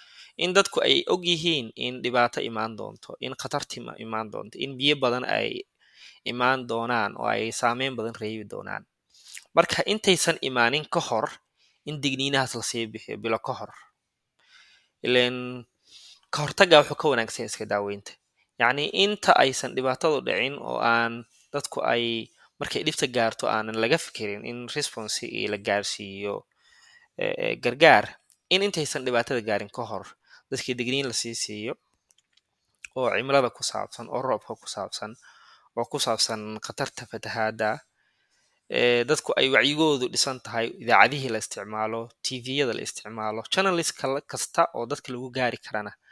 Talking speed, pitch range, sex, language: 55 wpm, 110-140 Hz, male, English